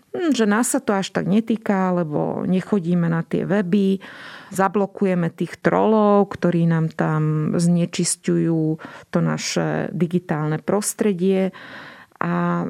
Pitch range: 165-190 Hz